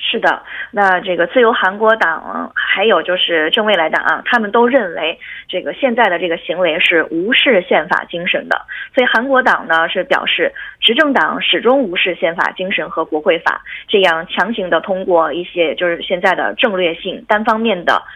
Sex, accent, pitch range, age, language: female, Chinese, 180-270 Hz, 20-39, Korean